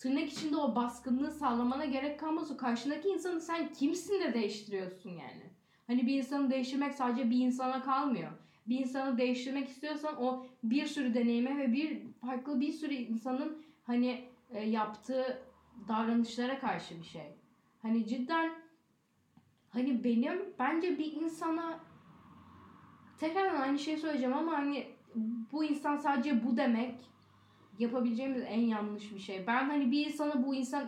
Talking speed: 140 wpm